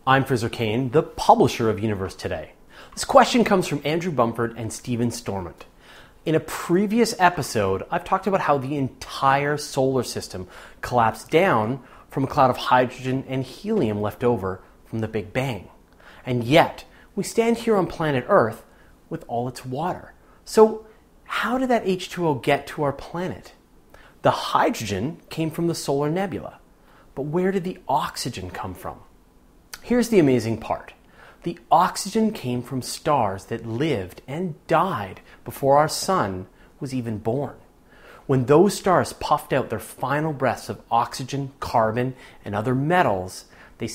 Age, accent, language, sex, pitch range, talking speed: 30-49, American, English, male, 110-170 Hz, 155 wpm